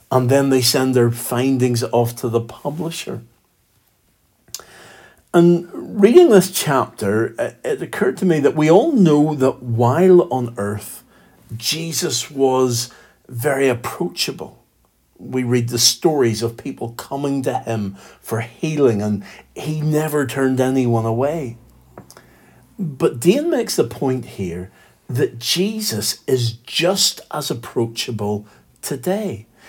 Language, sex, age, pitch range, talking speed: English, male, 50-69, 115-160 Hz, 120 wpm